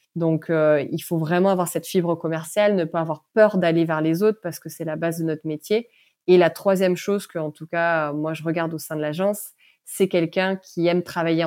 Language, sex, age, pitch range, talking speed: French, female, 20-39, 165-195 Hz, 235 wpm